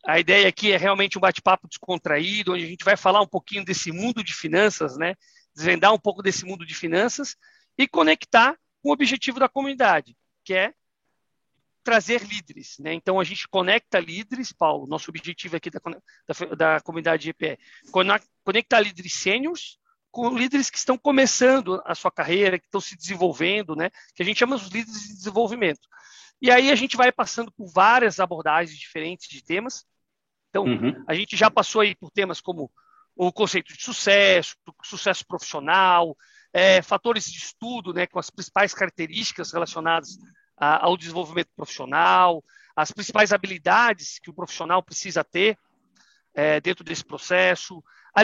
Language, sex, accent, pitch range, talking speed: Portuguese, male, Brazilian, 175-235 Hz, 165 wpm